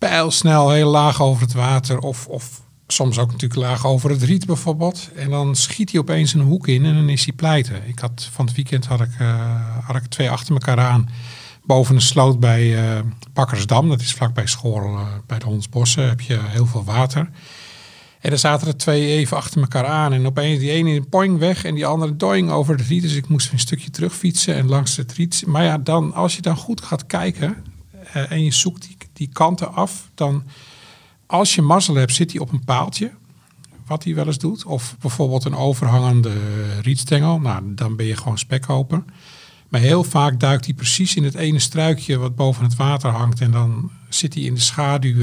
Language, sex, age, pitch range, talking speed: Dutch, male, 50-69, 125-155 Hz, 215 wpm